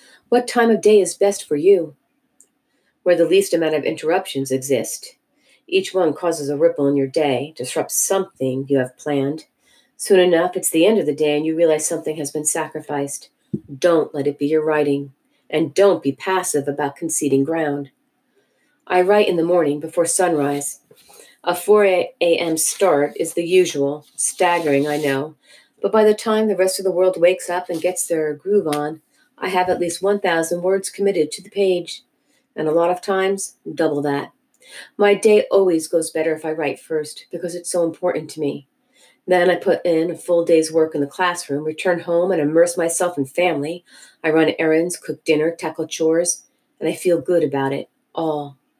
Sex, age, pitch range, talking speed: female, 40-59, 150-190 Hz, 190 wpm